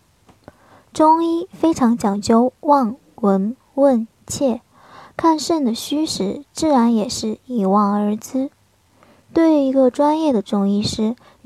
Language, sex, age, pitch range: Chinese, male, 20-39, 220-275 Hz